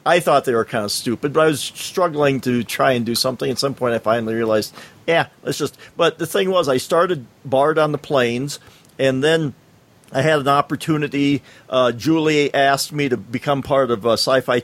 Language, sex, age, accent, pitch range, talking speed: English, male, 50-69, American, 125-150 Hz, 205 wpm